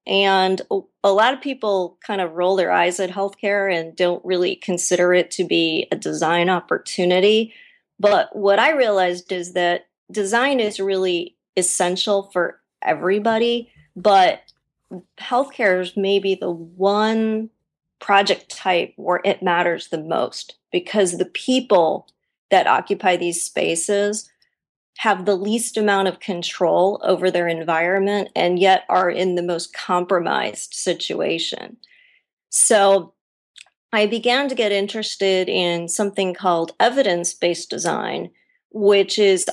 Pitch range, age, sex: 180-215 Hz, 30-49, female